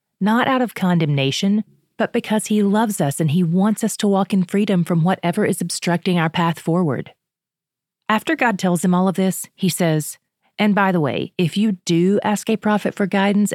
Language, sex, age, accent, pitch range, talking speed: English, female, 30-49, American, 160-195 Hz, 200 wpm